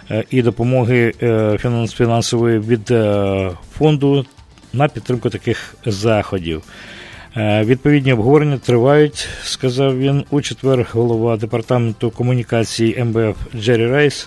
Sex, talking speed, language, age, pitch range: male, 95 wpm, English, 50-69, 110-135 Hz